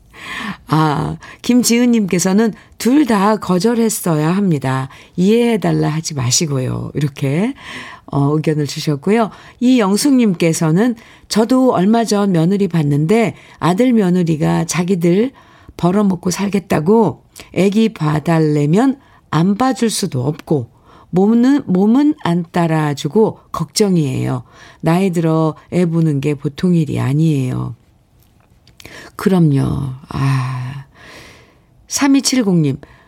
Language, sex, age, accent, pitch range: Korean, female, 50-69, native, 150-210 Hz